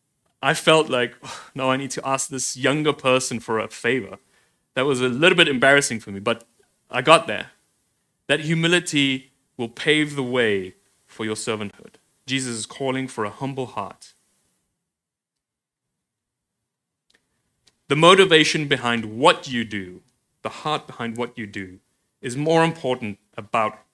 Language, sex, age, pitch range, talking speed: English, male, 30-49, 110-140 Hz, 150 wpm